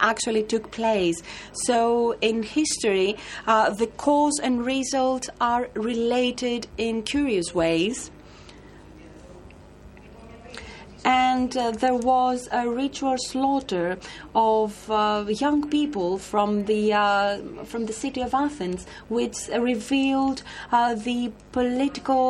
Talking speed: 110 wpm